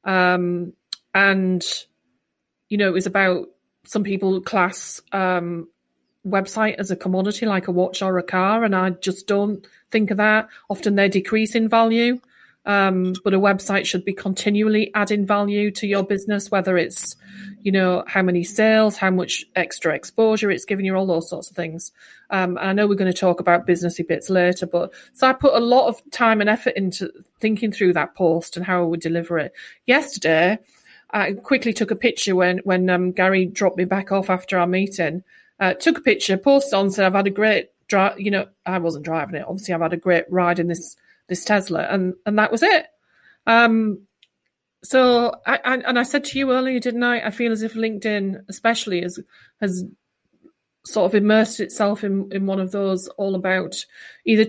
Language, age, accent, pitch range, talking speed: English, 40-59, British, 185-215 Hz, 195 wpm